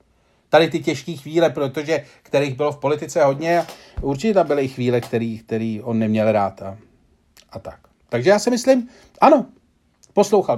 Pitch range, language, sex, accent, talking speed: 110-190 Hz, Czech, male, native, 160 wpm